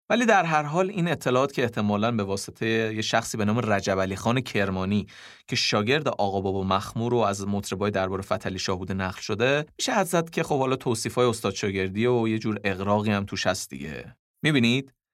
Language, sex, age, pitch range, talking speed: Persian, male, 30-49, 100-125 Hz, 190 wpm